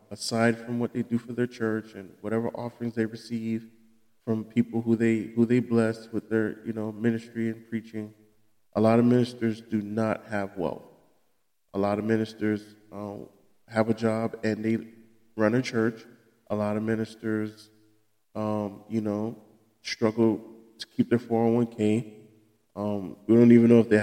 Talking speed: 170 wpm